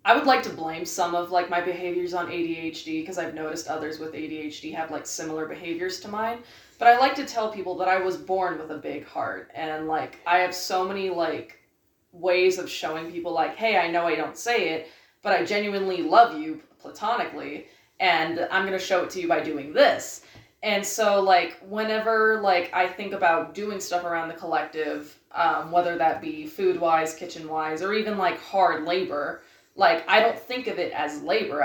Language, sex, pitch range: English, female, 165-215 Hz